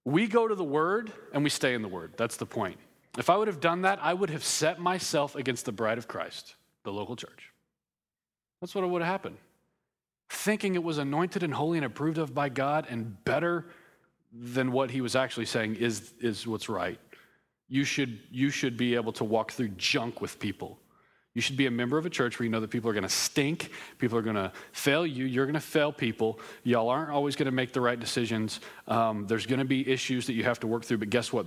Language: English